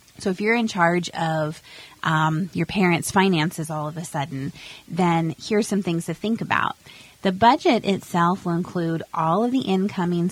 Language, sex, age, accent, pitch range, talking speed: English, female, 30-49, American, 160-185 Hz, 175 wpm